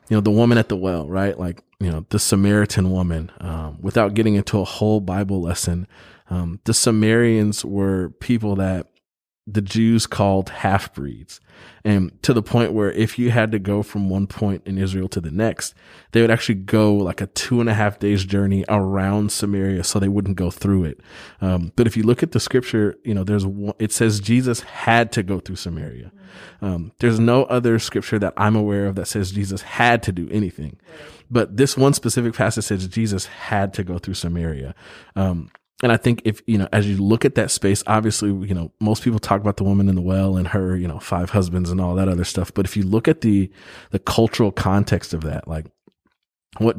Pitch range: 95-110 Hz